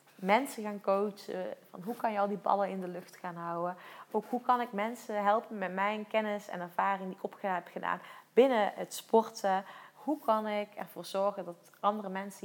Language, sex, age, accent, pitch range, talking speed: Dutch, female, 30-49, Dutch, 180-220 Hz, 205 wpm